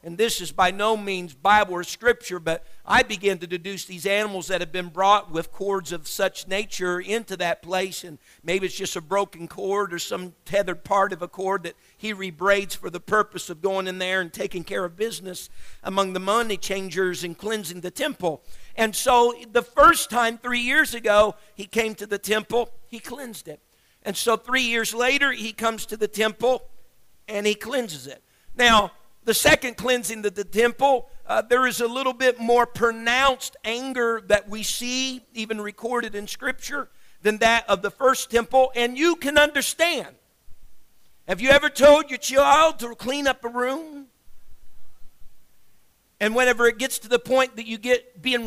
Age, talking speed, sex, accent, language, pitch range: 50-69, 185 wpm, male, American, English, 190-250 Hz